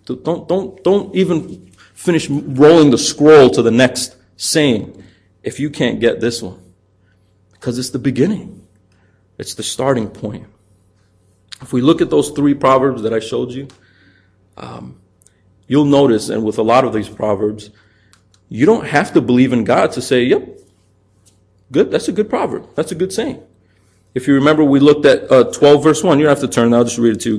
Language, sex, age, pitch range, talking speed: English, male, 30-49, 110-170 Hz, 195 wpm